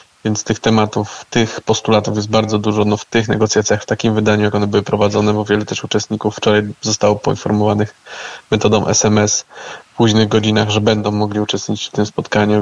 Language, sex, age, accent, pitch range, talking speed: Polish, male, 20-39, native, 105-110 Hz, 180 wpm